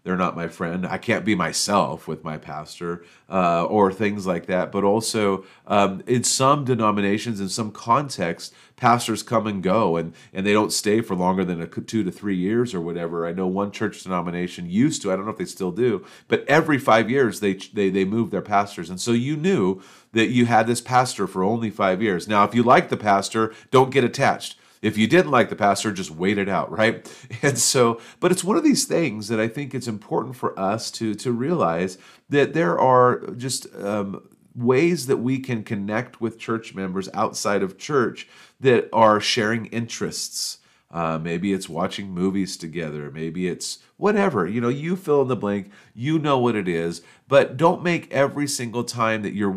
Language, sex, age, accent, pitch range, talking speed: English, male, 40-59, American, 95-125 Hz, 205 wpm